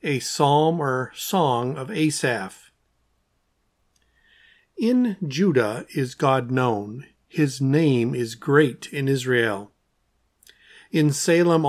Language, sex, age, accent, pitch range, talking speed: English, male, 50-69, American, 120-160 Hz, 100 wpm